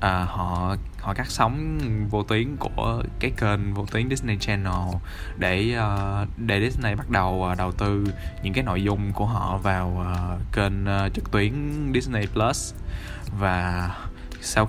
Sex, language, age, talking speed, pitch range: male, Vietnamese, 20-39, 145 wpm, 90-115 Hz